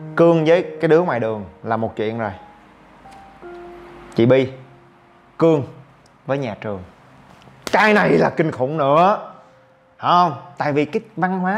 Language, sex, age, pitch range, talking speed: Vietnamese, male, 20-39, 130-200 Hz, 150 wpm